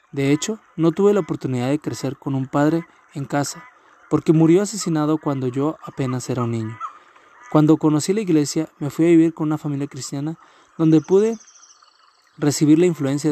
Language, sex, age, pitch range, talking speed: Spanish, male, 20-39, 140-165 Hz, 175 wpm